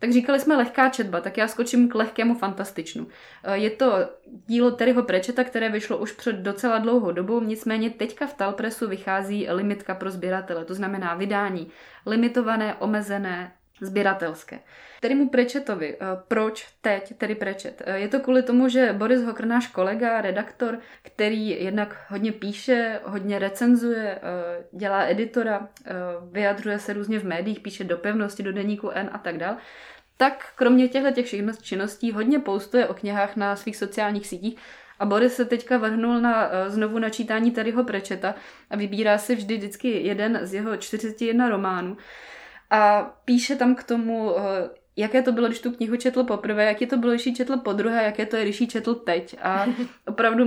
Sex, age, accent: female, 20-39, native